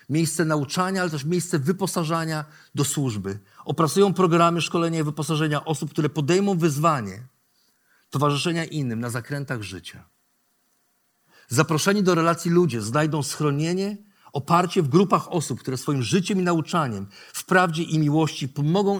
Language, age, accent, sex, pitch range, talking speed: Polish, 50-69, native, male, 120-170 Hz, 135 wpm